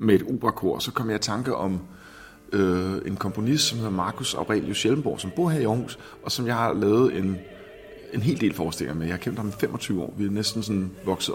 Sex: male